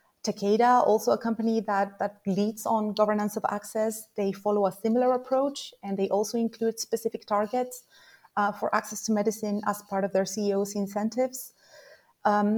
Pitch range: 205-250 Hz